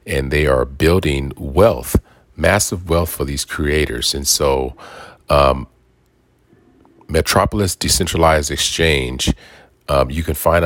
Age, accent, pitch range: 40-59, American, 70-85 Hz